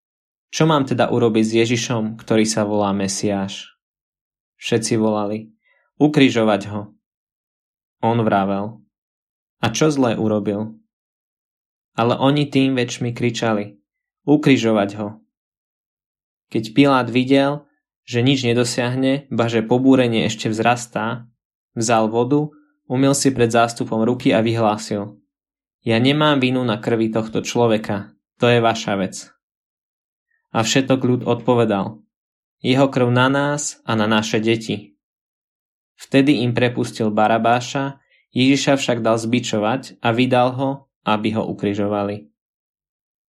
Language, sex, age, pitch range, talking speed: Slovak, male, 20-39, 110-130 Hz, 115 wpm